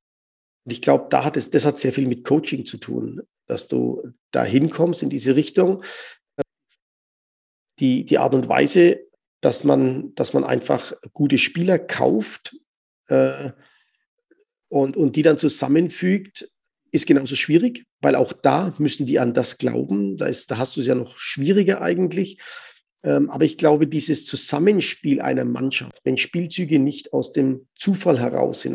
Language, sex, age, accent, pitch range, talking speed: German, male, 50-69, German, 135-205 Hz, 155 wpm